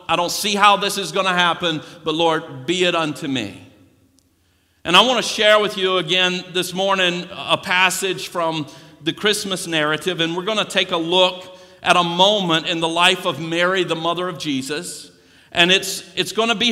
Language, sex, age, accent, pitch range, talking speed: English, male, 50-69, American, 155-190 Hz, 200 wpm